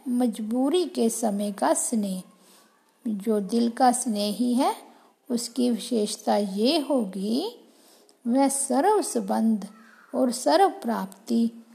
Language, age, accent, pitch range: Hindi, 50-69, native, 220-270 Hz